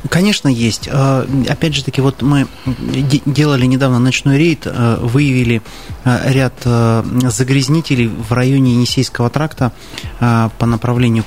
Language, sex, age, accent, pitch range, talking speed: Russian, male, 30-49, native, 115-135 Hz, 105 wpm